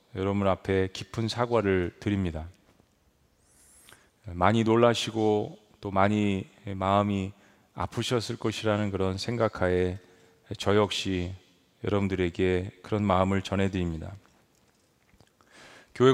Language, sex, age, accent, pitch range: Korean, male, 30-49, native, 95-115 Hz